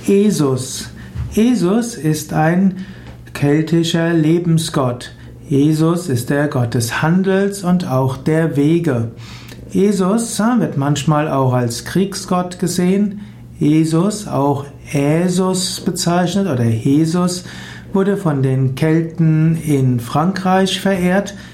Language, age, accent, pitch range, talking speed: German, 60-79, German, 135-180 Hz, 105 wpm